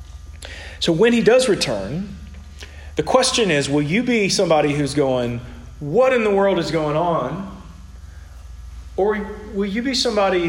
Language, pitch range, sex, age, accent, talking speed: English, 120-180 Hz, male, 40-59, American, 150 wpm